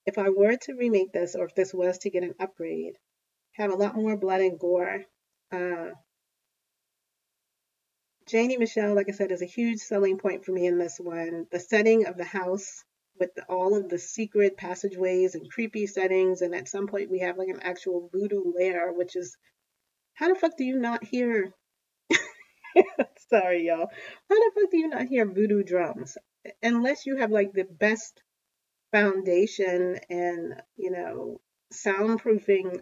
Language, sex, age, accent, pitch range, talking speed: English, female, 40-59, American, 180-225 Hz, 170 wpm